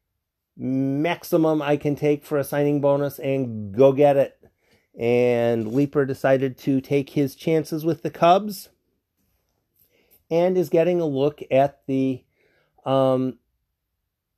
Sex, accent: male, American